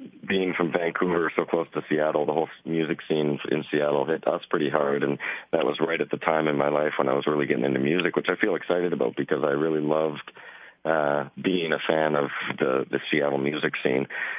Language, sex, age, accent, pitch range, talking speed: English, male, 40-59, American, 75-90 Hz, 220 wpm